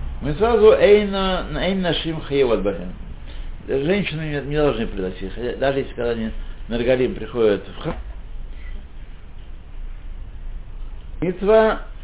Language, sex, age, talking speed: Russian, male, 60-79, 90 wpm